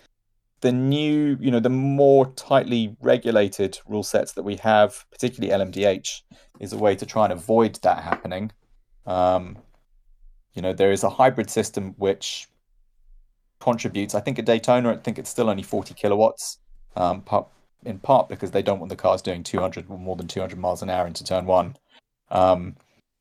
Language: English